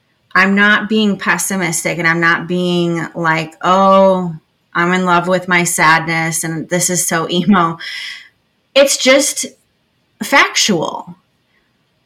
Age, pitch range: 30-49, 180-225 Hz